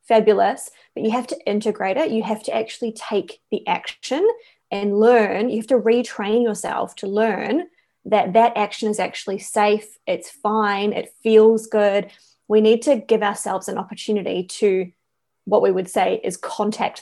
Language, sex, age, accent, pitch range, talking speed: English, female, 20-39, Australian, 195-230 Hz, 170 wpm